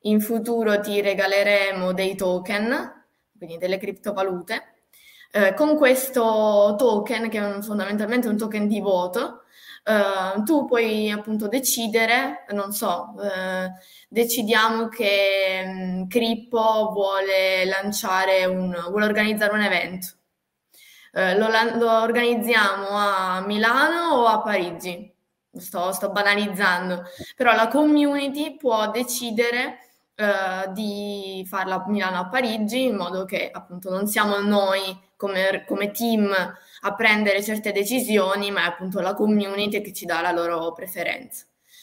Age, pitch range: 20-39, 190-220 Hz